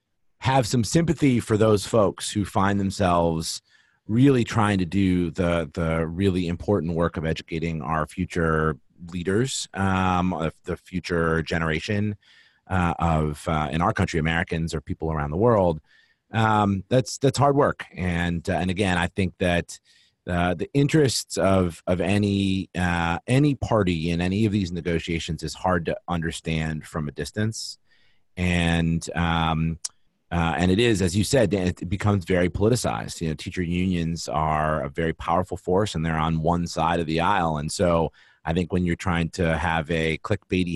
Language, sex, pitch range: English, male, 80-105 Hz